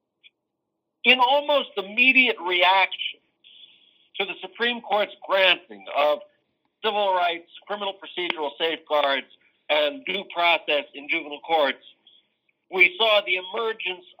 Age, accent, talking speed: 60-79, American, 105 wpm